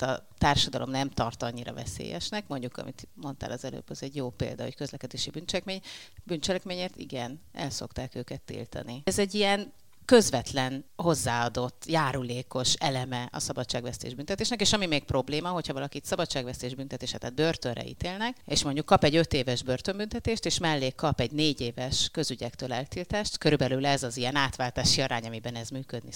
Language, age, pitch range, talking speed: Hungarian, 30-49, 125-170 Hz, 150 wpm